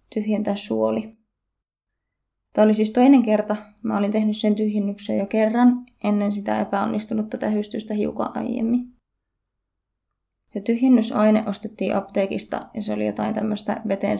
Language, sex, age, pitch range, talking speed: Finnish, female, 20-39, 200-230 Hz, 125 wpm